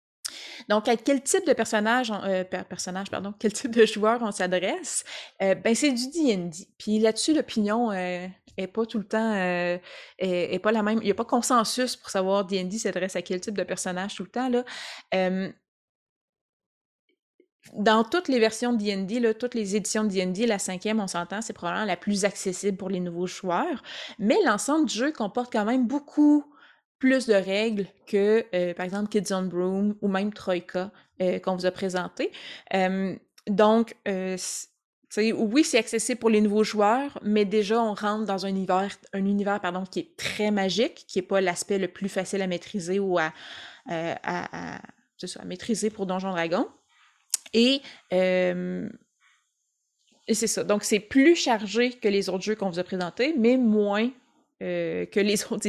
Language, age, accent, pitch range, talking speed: French, 20-39, Canadian, 190-230 Hz, 185 wpm